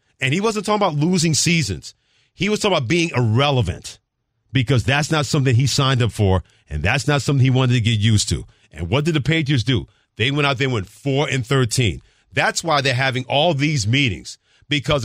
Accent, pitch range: American, 115-160 Hz